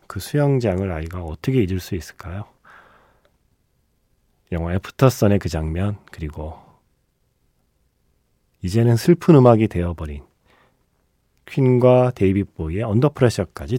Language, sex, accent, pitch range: Korean, male, native, 90-130 Hz